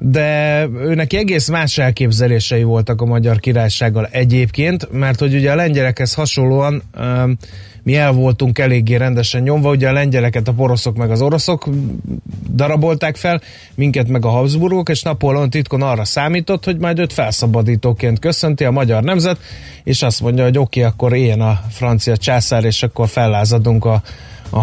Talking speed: 160 wpm